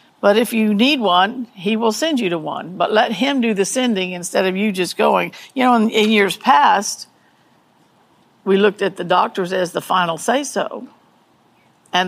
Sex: female